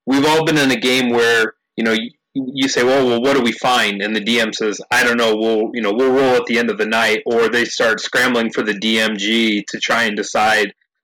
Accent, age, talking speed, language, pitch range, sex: American, 30-49, 250 wpm, English, 110-135 Hz, male